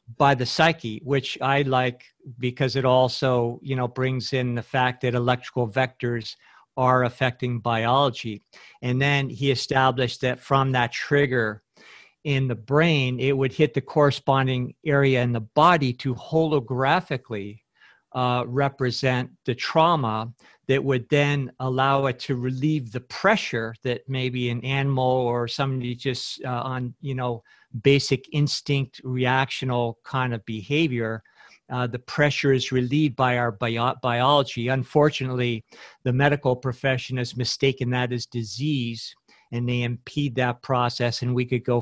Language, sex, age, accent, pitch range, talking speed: English, male, 50-69, American, 120-135 Hz, 140 wpm